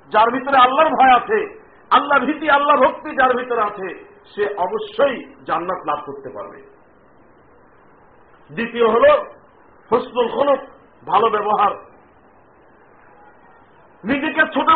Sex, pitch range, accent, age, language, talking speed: male, 270-310 Hz, native, 50-69, Bengali, 75 wpm